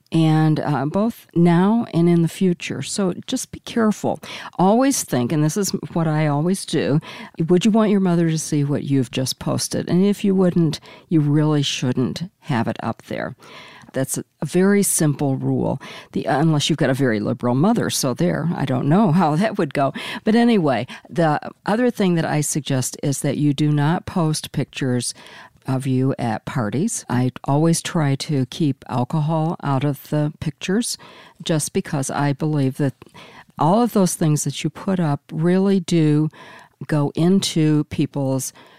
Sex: female